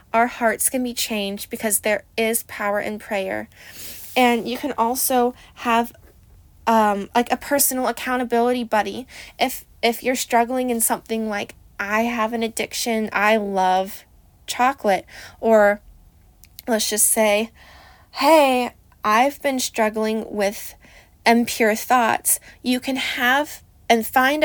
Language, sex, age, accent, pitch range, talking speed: English, female, 20-39, American, 215-245 Hz, 130 wpm